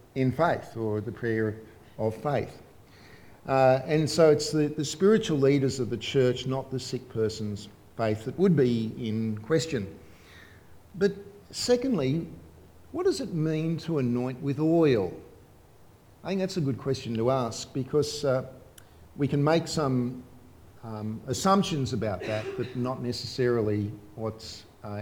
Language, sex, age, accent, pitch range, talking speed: English, male, 50-69, Australian, 110-145 Hz, 145 wpm